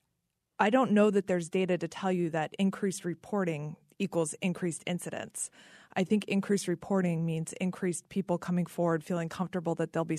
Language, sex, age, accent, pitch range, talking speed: English, female, 20-39, American, 165-195 Hz, 170 wpm